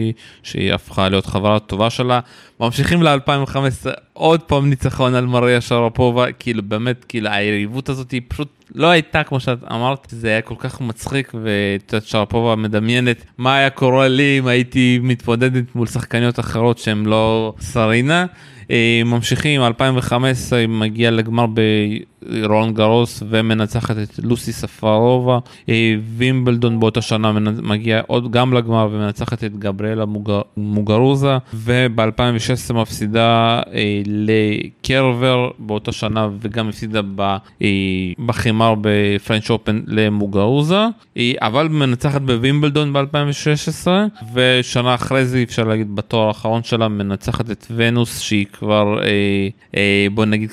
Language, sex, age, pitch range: Hebrew, male, 20-39, 110-125 Hz